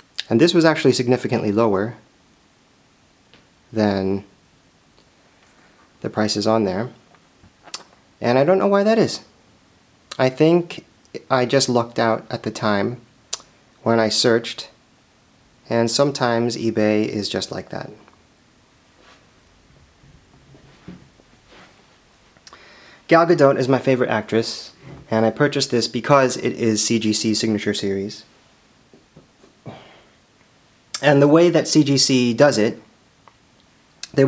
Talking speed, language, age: 105 wpm, English, 30-49